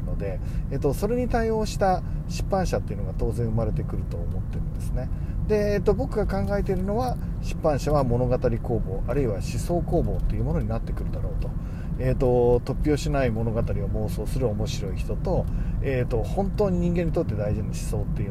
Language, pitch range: Japanese, 105-160 Hz